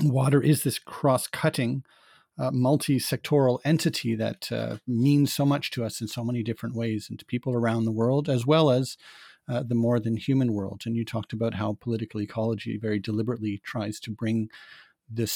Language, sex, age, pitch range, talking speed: English, male, 40-59, 110-130 Hz, 185 wpm